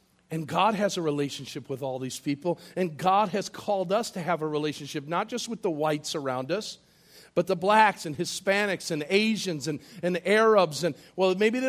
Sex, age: male, 50-69